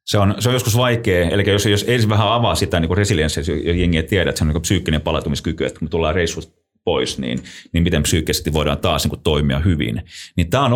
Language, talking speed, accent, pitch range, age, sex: Finnish, 230 wpm, native, 85-105 Hz, 30-49, male